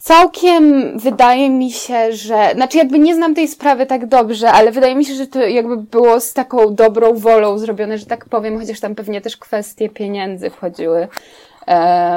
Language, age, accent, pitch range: Polish, 20-39, native, 220-265 Hz